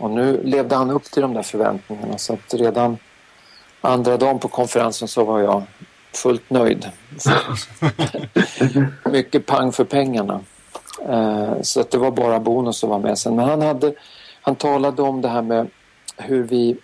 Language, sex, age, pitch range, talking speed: Swedish, male, 50-69, 115-140 Hz, 160 wpm